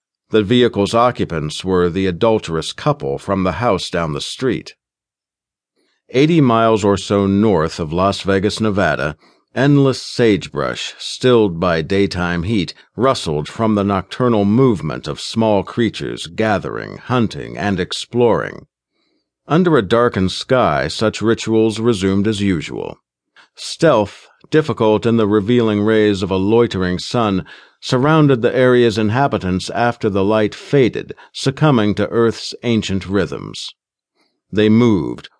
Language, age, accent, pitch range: English, 50-69, American, 95-120 Hz